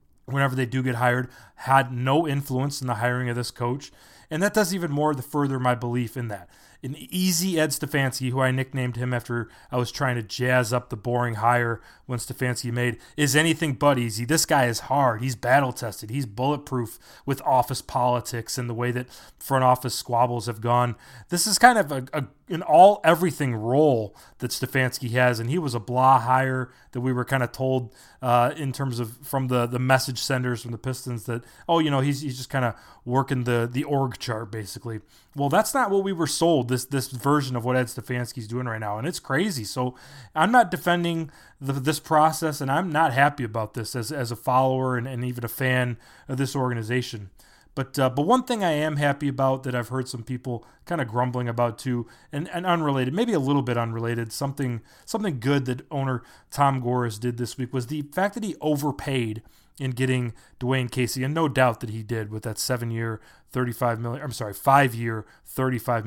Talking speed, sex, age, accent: 210 wpm, male, 20-39, American